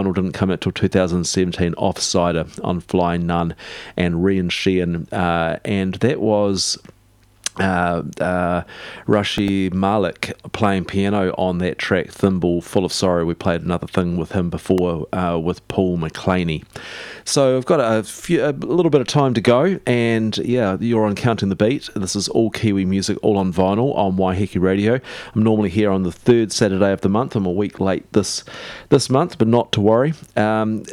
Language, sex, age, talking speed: English, male, 40-59, 180 wpm